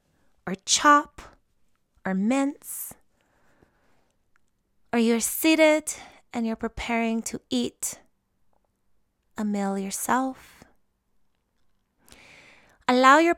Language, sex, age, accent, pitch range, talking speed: English, female, 20-39, American, 200-245 Hz, 75 wpm